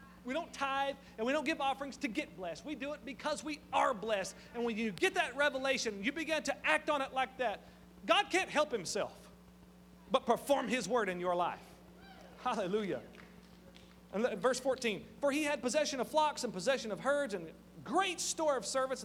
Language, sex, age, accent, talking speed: English, male, 40-59, American, 190 wpm